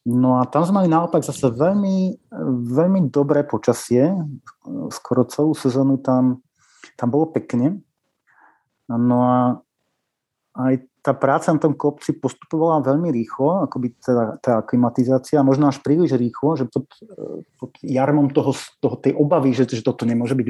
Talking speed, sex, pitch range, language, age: 145 wpm, male, 120-145 Hz, Slovak, 30-49